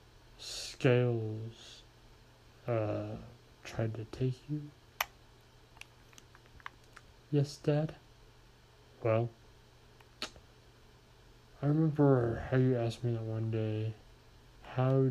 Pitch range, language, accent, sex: 115-130 Hz, English, American, male